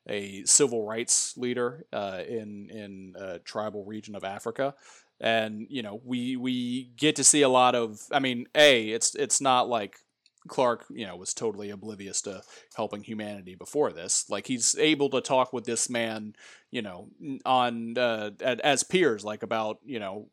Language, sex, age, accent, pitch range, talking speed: English, male, 30-49, American, 100-125 Hz, 175 wpm